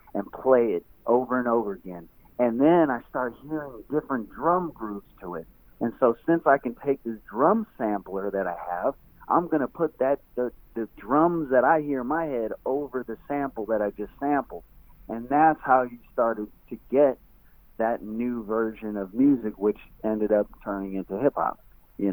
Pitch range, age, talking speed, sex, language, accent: 105-140 Hz, 40-59, 190 wpm, male, English, American